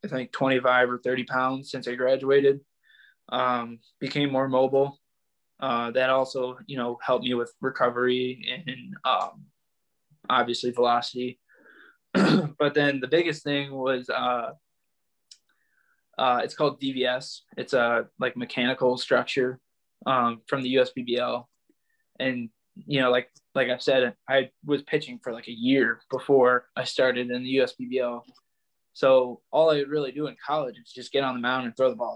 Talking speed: 155 wpm